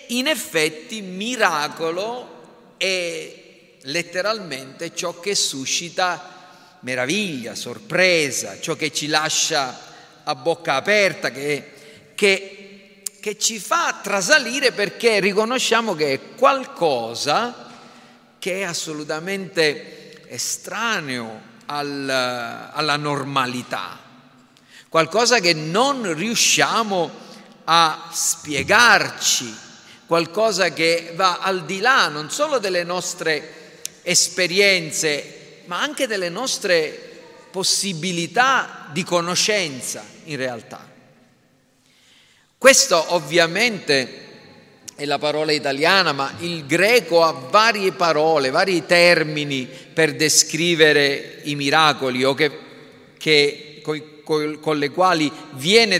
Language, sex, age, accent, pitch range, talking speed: Italian, male, 50-69, native, 150-200 Hz, 95 wpm